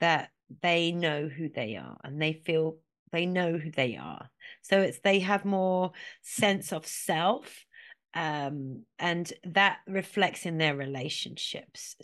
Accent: British